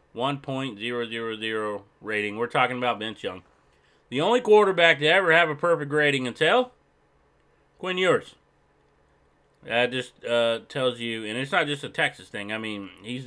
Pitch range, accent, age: 110-155 Hz, American, 30-49